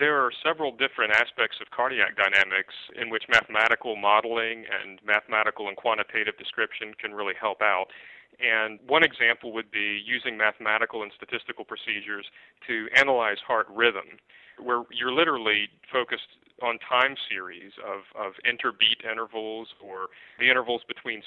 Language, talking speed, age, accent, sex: English, 140 wpm, 40-59, American, male